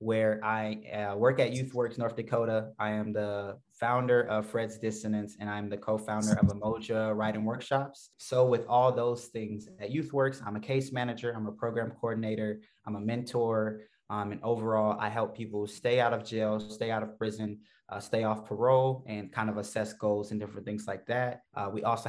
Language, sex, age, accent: English, male, 20-39, American